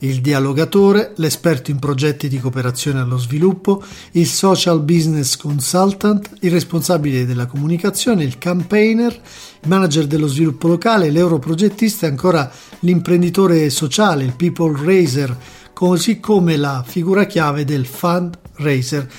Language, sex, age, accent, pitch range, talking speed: Italian, male, 50-69, native, 145-190 Hz, 120 wpm